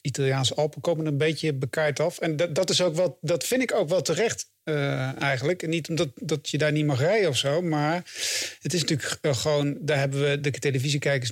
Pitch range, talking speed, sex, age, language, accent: 140-160 Hz, 215 wpm, male, 50-69, English, Dutch